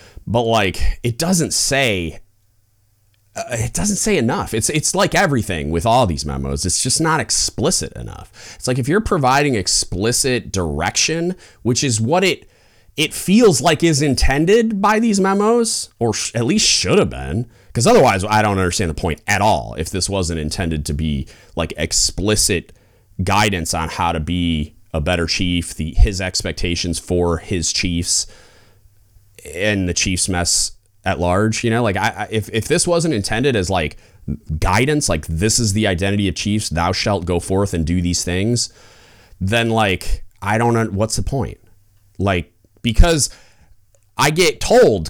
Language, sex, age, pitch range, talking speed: English, male, 30-49, 90-120 Hz, 165 wpm